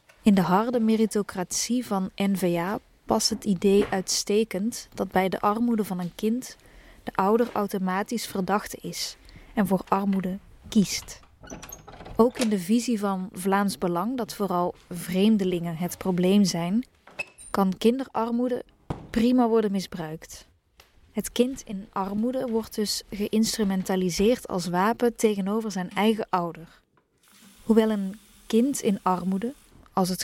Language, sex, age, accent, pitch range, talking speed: Dutch, female, 20-39, Dutch, 185-220 Hz, 125 wpm